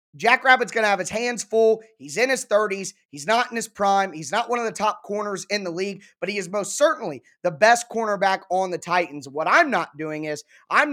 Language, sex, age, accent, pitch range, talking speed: English, male, 20-39, American, 175-215 Hz, 240 wpm